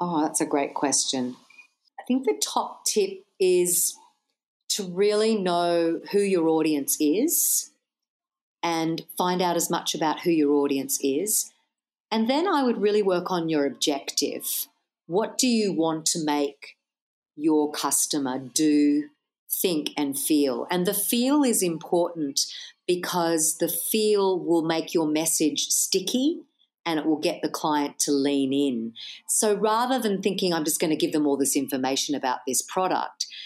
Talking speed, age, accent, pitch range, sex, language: 155 wpm, 40-59, Australian, 155-225 Hz, female, English